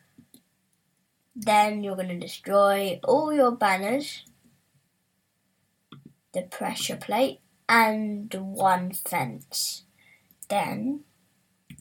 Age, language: 10-29, English